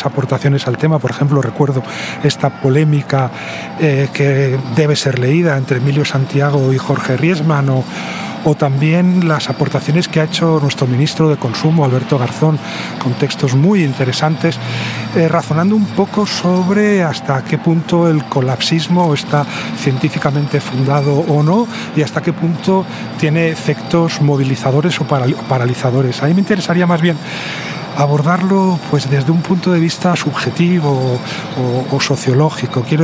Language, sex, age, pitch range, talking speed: Spanish, male, 40-59, 135-170 Hz, 145 wpm